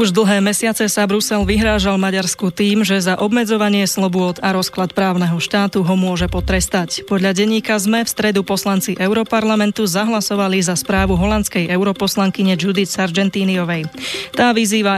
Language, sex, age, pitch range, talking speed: Slovak, female, 20-39, 185-210 Hz, 140 wpm